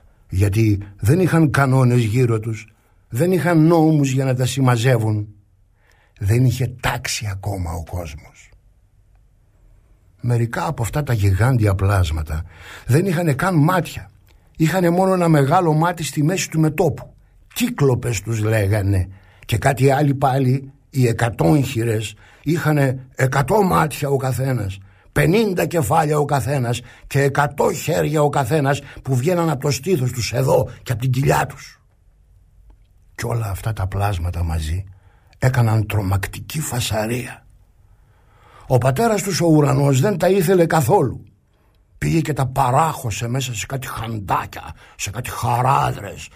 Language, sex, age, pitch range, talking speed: Greek, male, 60-79, 105-145 Hz, 135 wpm